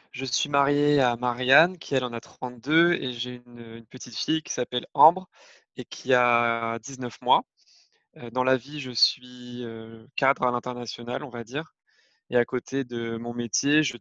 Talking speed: 180 wpm